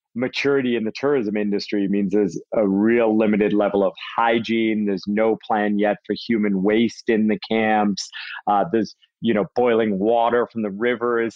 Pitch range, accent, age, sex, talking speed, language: 100-115 Hz, American, 40-59, male, 175 wpm, English